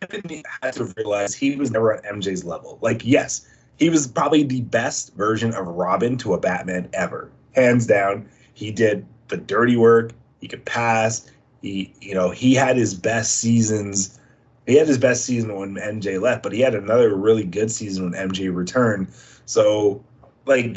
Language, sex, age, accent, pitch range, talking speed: English, male, 30-49, American, 105-140 Hz, 180 wpm